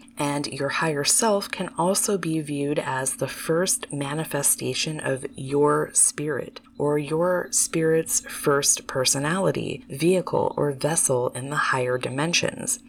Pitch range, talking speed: 135-175 Hz, 125 wpm